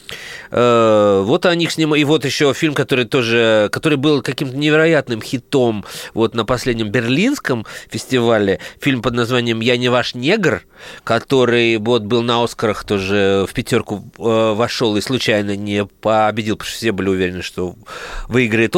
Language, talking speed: Russian, 150 wpm